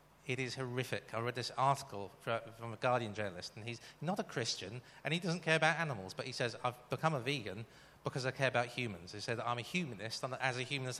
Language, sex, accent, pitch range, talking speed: English, male, British, 115-150 Hz, 235 wpm